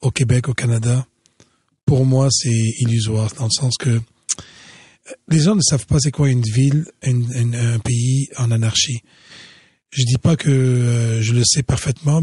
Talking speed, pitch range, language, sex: 170 wpm, 120-145 Hz, French, male